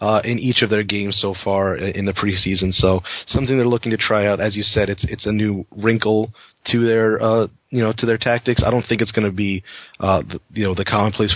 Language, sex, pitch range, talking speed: English, male, 100-110 Hz, 250 wpm